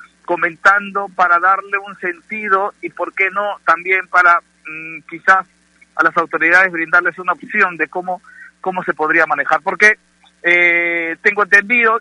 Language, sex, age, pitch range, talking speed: Spanish, male, 50-69, 155-195 Hz, 145 wpm